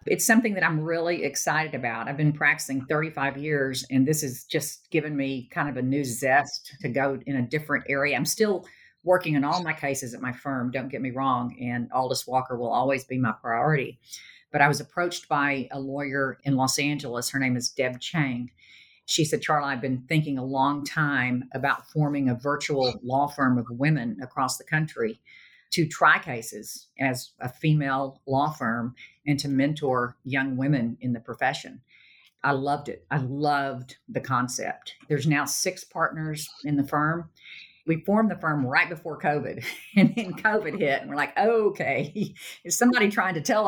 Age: 50-69